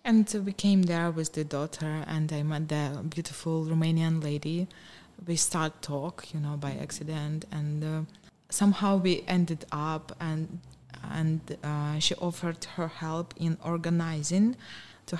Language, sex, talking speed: English, female, 145 wpm